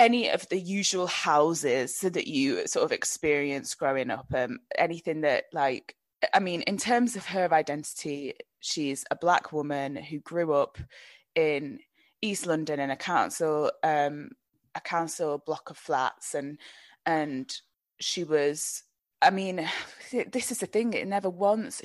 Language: English